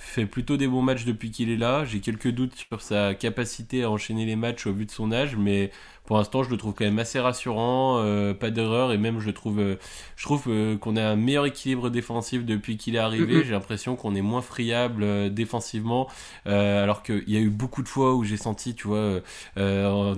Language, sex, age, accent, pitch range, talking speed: French, male, 20-39, French, 105-125 Hz, 235 wpm